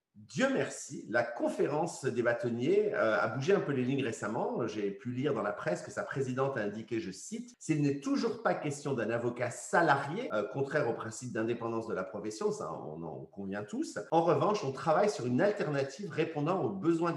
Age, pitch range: 50-69, 120-190 Hz